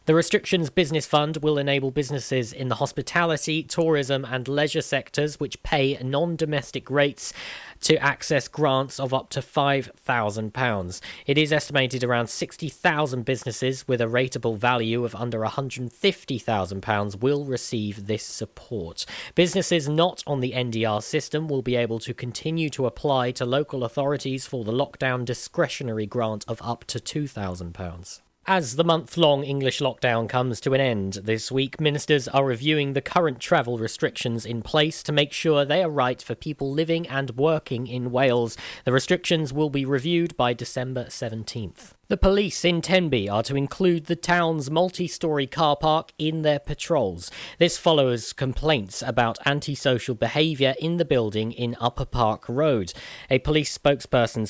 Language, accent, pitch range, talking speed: English, British, 120-150 Hz, 155 wpm